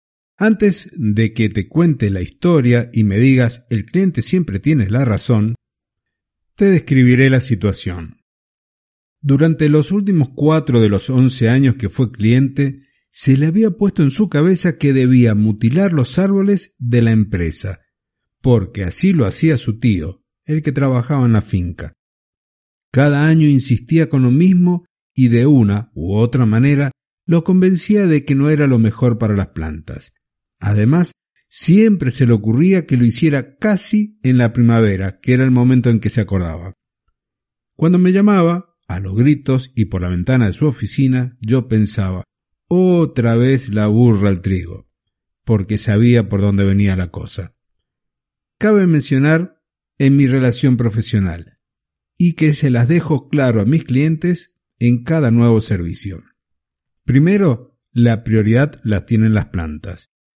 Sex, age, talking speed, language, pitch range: male, 50-69, 155 wpm, Spanish, 110-155 Hz